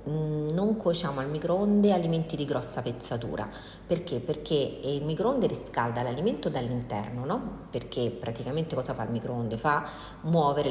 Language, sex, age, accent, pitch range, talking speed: Italian, female, 40-59, native, 125-150 Hz, 135 wpm